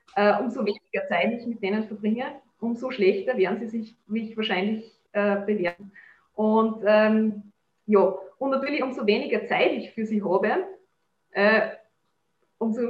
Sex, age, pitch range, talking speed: female, 20-39, 210-245 Hz, 140 wpm